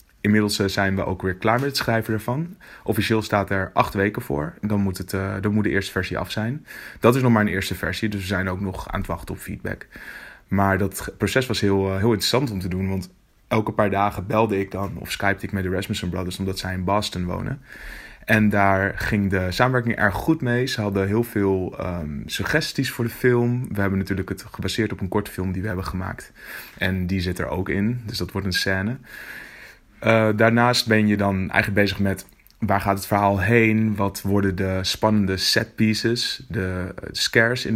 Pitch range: 95-110 Hz